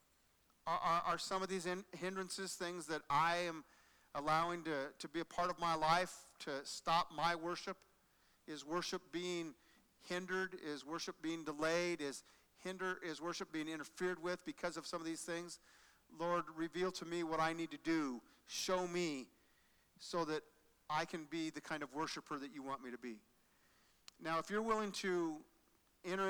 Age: 50-69